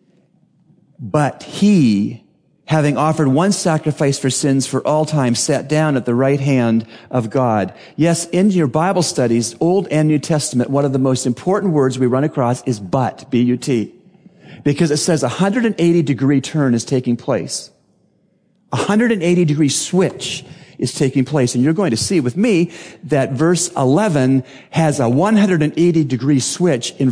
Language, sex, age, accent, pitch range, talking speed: English, male, 40-59, American, 130-180 Hz, 155 wpm